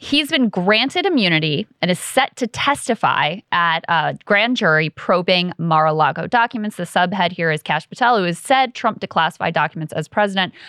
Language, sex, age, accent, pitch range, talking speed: English, female, 20-39, American, 160-215 Hz, 170 wpm